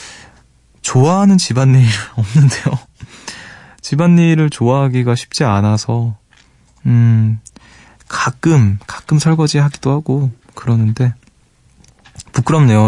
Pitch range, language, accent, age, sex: 110-145 Hz, Korean, native, 20-39, male